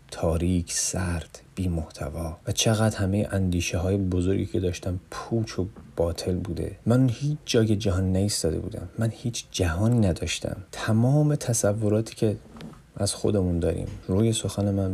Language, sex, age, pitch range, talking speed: Persian, male, 30-49, 90-115 Hz, 140 wpm